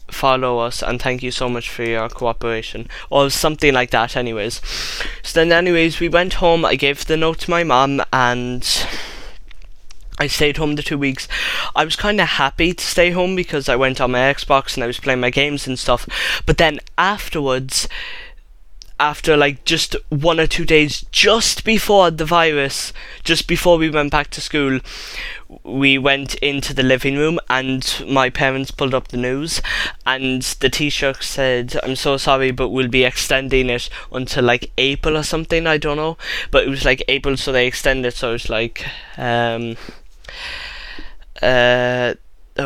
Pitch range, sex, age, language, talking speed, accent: 125-155 Hz, male, 10-29, English, 175 wpm, British